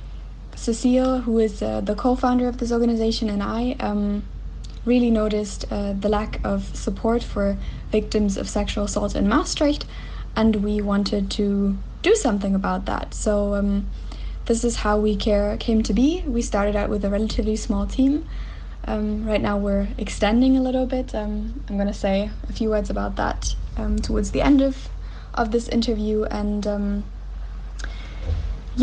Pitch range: 200-235 Hz